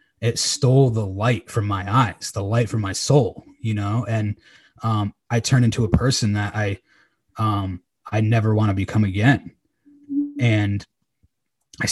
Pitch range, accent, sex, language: 110-135 Hz, American, male, English